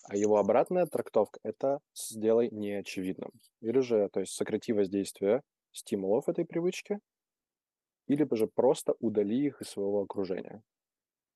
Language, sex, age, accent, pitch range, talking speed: Russian, male, 20-39, native, 100-115 Hz, 125 wpm